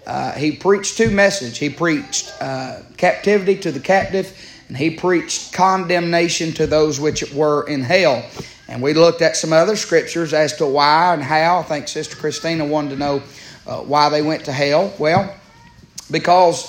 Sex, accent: male, American